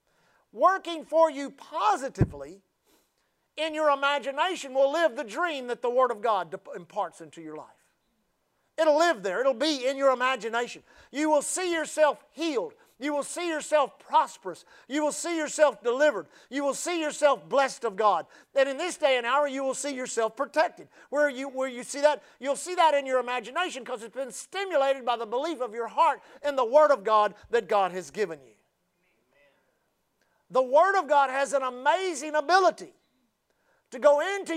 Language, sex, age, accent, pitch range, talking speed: English, male, 50-69, American, 250-310 Hz, 180 wpm